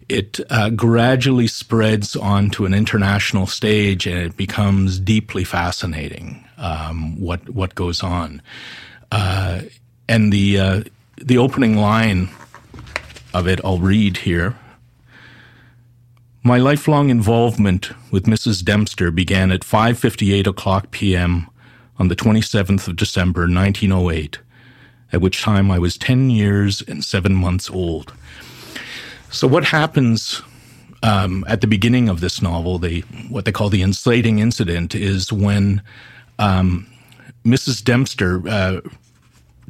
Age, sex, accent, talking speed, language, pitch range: 50-69, male, American, 120 wpm, English, 95-120 Hz